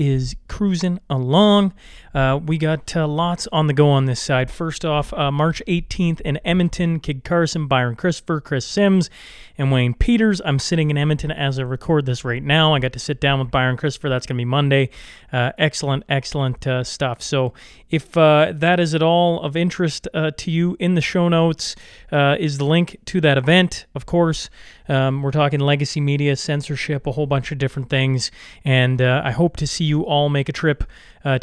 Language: English